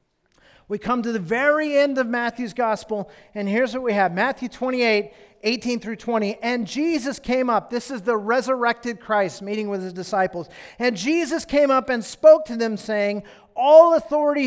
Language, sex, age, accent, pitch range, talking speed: English, male, 40-59, American, 215-285 Hz, 180 wpm